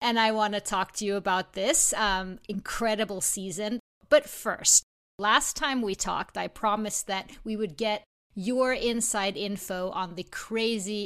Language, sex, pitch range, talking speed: English, female, 190-230 Hz, 165 wpm